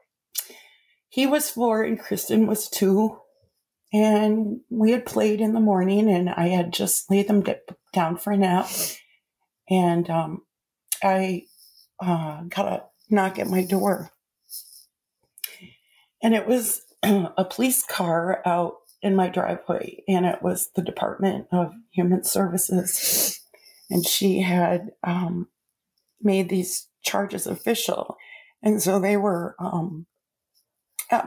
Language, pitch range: English, 190-260 Hz